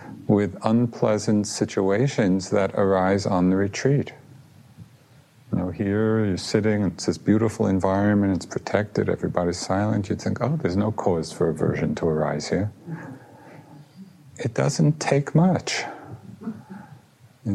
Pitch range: 95-130 Hz